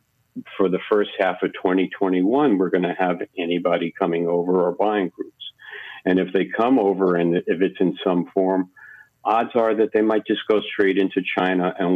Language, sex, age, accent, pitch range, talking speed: English, male, 50-69, American, 90-105 Hz, 190 wpm